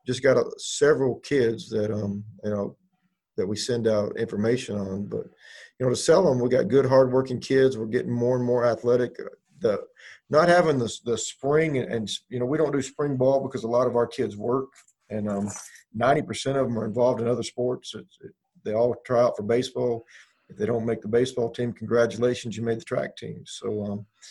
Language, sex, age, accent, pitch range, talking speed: English, male, 40-59, American, 110-130 Hz, 210 wpm